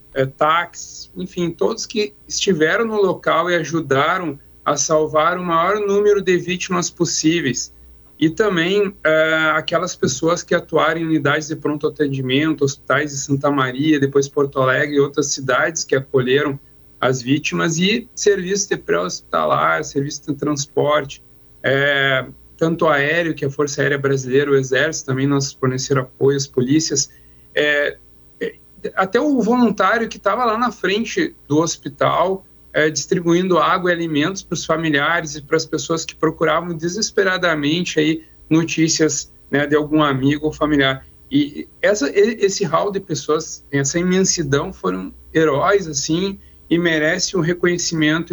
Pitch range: 140-175 Hz